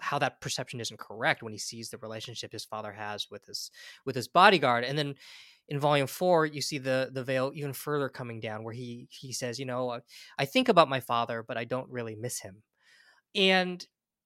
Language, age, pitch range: English, 20-39, 125-155 Hz